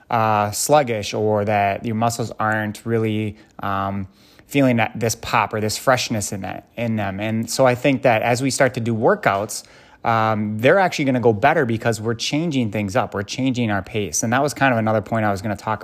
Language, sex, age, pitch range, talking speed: English, male, 20-39, 100-120 Hz, 225 wpm